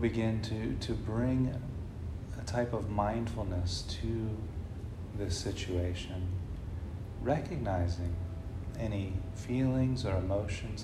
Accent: American